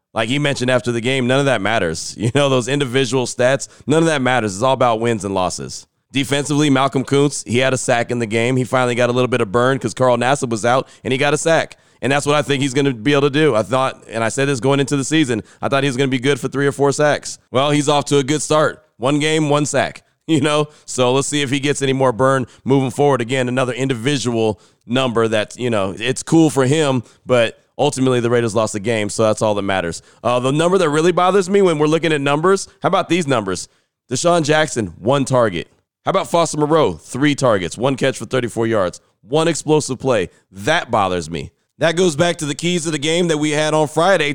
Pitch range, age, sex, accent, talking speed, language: 125-160 Hz, 30-49, male, American, 250 wpm, English